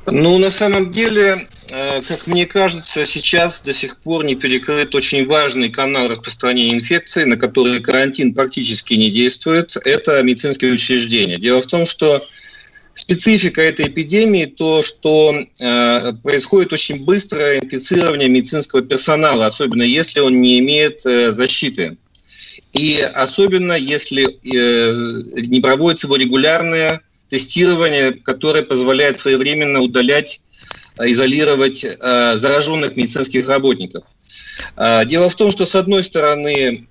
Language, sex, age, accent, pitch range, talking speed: Russian, male, 40-59, native, 125-170 Hz, 115 wpm